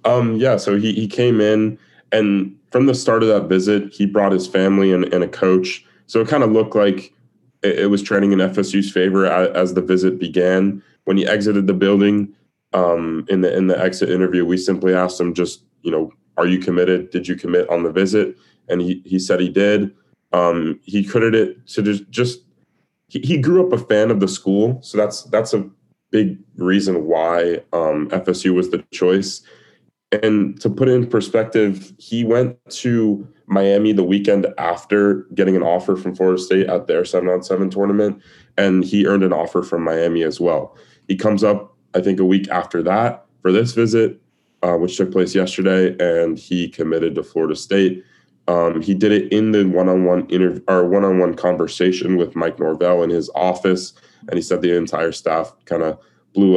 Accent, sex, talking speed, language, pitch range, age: American, male, 195 wpm, English, 90-105 Hz, 20-39